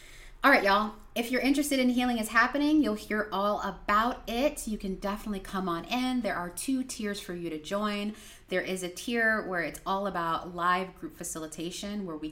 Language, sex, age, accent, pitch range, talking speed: English, female, 30-49, American, 160-210 Hz, 200 wpm